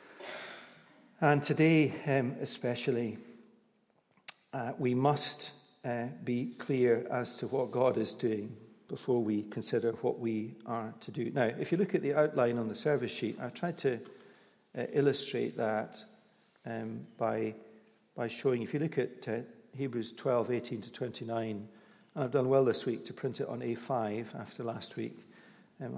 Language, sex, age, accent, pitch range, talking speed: English, male, 50-69, British, 125-175 Hz, 160 wpm